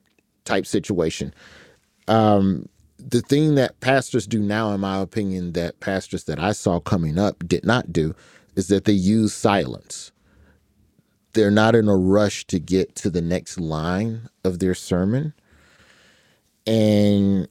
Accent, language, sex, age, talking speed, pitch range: American, English, male, 30-49, 145 wpm, 85-100 Hz